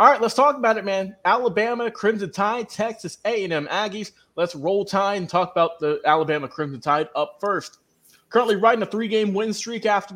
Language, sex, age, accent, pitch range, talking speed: English, male, 20-39, American, 180-220 Hz, 190 wpm